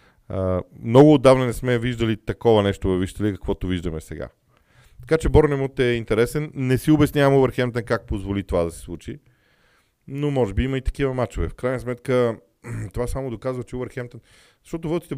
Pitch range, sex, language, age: 95-130 Hz, male, Bulgarian, 40-59